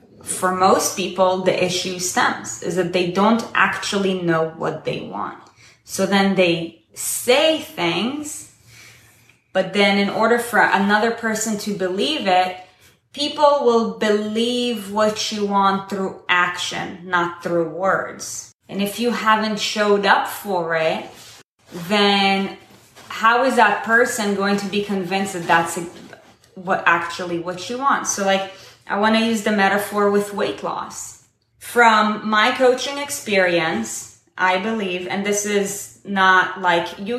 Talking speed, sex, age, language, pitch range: 140 wpm, female, 20-39, English, 180-215 Hz